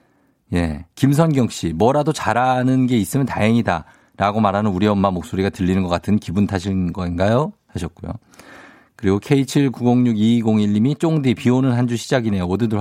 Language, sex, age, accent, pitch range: Korean, male, 50-69, native, 95-135 Hz